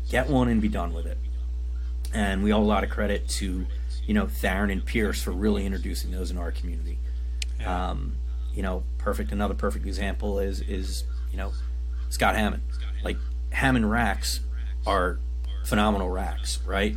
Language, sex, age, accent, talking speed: English, male, 40-59, American, 165 wpm